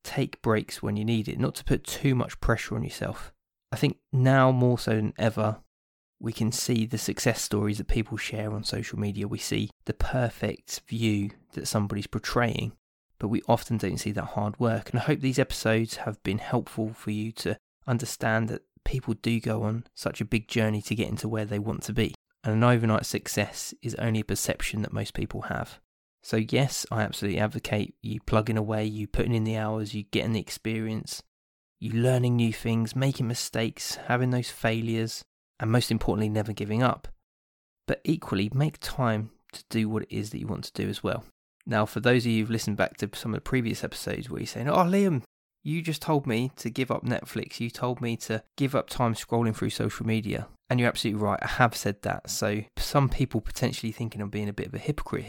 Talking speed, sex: 215 wpm, male